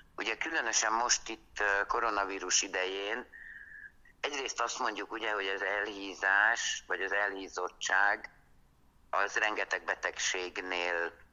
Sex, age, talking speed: male, 60-79, 100 wpm